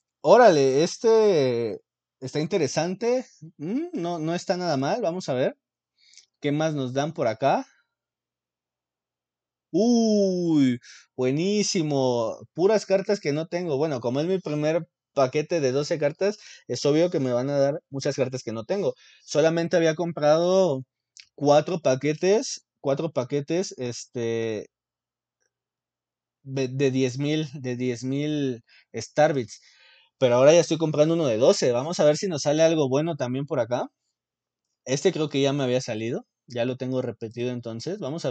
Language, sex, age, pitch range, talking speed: English, male, 20-39, 125-170 Hz, 145 wpm